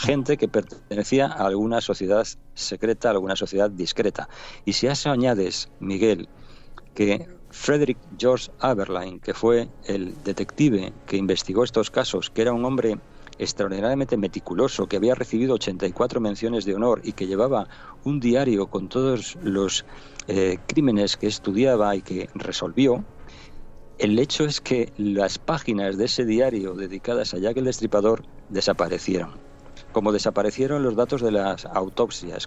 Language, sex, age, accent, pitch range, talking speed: Spanish, male, 50-69, Spanish, 100-125 Hz, 145 wpm